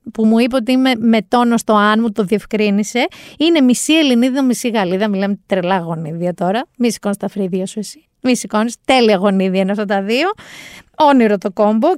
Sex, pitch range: female, 200-265 Hz